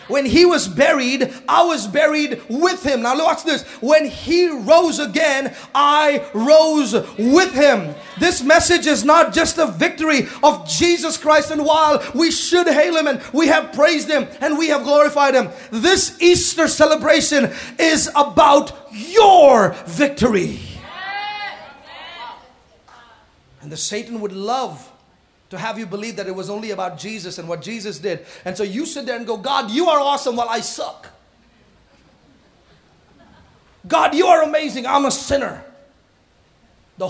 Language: English